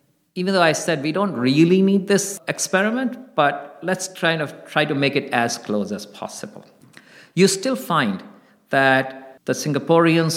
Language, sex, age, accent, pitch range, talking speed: English, male, 50-69, Indian, 120-170 Hz, 170 wpm